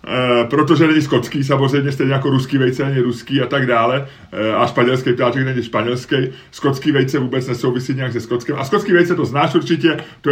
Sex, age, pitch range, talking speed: male, 30-49, 125-150 Hz, 190 wpm